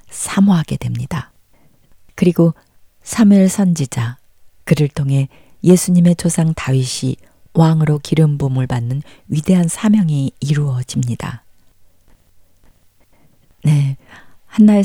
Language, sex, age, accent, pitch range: Korean, female, 40-59, native, 130-175 Hz